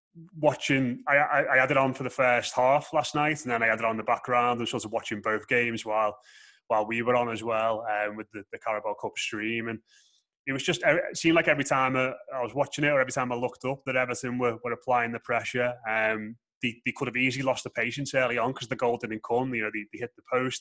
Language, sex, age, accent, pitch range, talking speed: English, male, 20-39, British, 115-130 Hz, 265 wpm